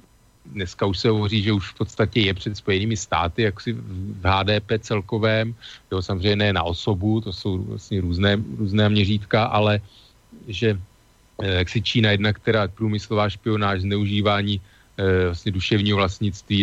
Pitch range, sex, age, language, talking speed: 100-115 Hz, male, 40-59, Slovak, 155 wpm